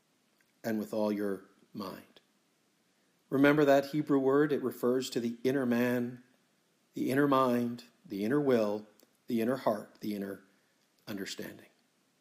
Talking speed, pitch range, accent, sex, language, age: 135 wpm, 120-140 Hz, American, male, English, 50-69